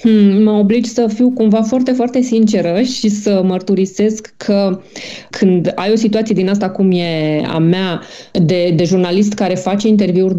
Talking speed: 160 wpm